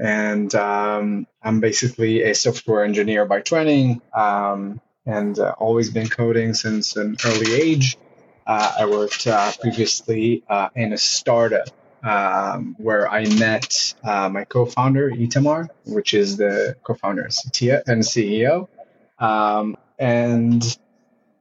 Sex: male